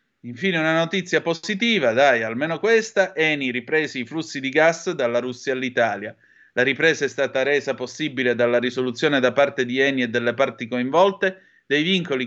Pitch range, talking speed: 120-160 Hz, 165 wpm